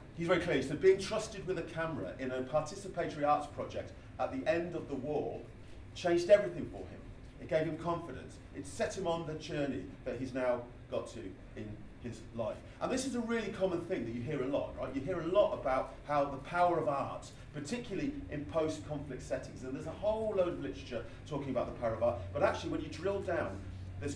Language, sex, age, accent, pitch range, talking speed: English, male, 40-59, British, 120-170 Hz, 225 wpm